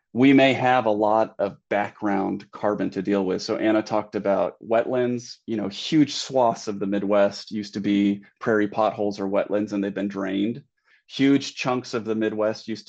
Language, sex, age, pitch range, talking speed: English, male, 30-49, 100-120 Hz, 185 wpm